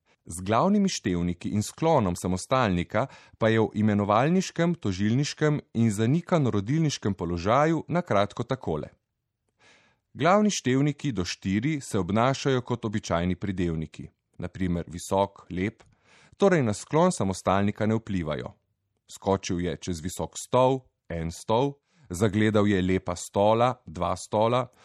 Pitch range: 95-130 Hz